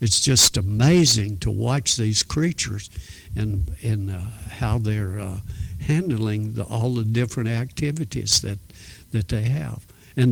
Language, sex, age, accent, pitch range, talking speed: English, male, 60-79, American, 105-135 Hz, 140 wpm